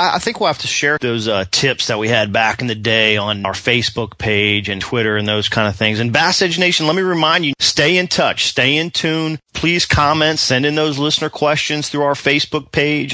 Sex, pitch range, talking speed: male, 110-145 Hz, 235 wpm